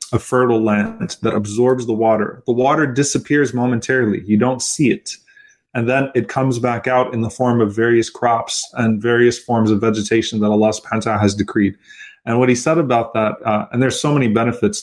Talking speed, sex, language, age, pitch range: 205 wpm, male, English, 20-39, 110-130 Hz